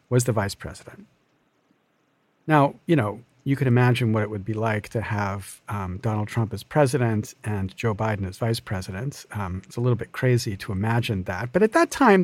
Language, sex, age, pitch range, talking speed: English, male, 50-69, 110-150 Hz, 200 wpm